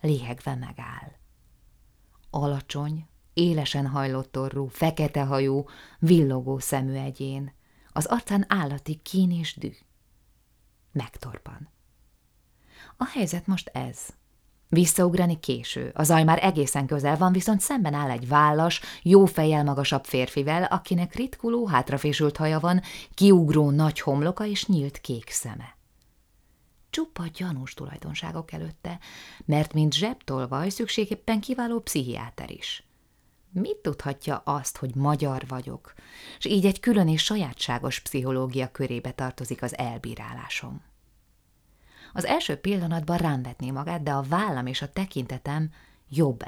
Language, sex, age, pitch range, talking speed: Hungarian, female, 20-39, 135-175 Hz, 115 wpm